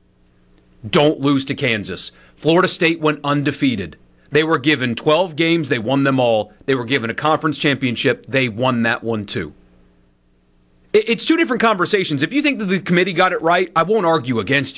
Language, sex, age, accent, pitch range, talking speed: English, male, 30-49, American, 110-180 Hz, 185 wpm